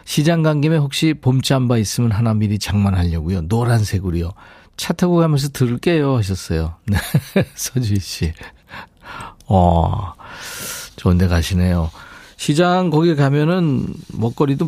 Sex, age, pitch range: male, 50-69, 105-155 Hz